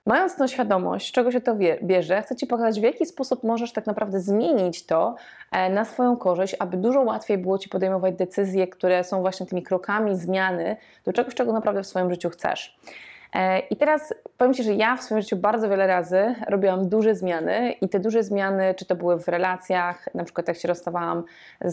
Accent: native